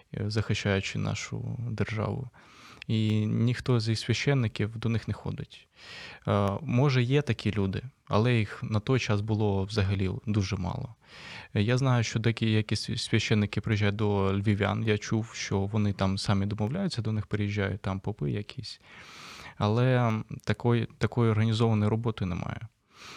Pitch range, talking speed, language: 105-120 Hz, 130 wpm, Ukrainian